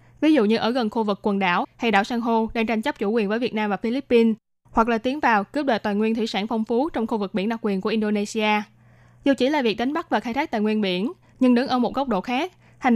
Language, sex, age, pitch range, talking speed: Vietnamese, female, 20-39, 205-255 Hz, 295 wpm